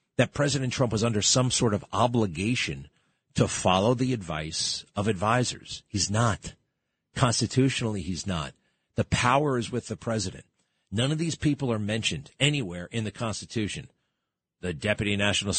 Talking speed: 150 wpm